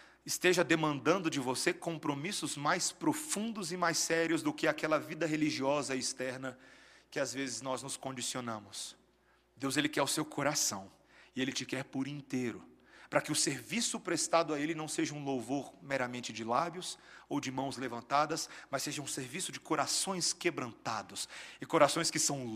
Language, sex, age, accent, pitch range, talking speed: Portuguese, male, 40-59, Brazilian, 140-180 Hz, 170 wpm